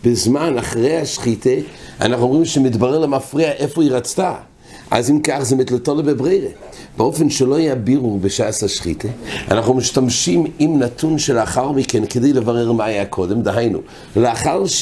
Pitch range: 110-145 Hz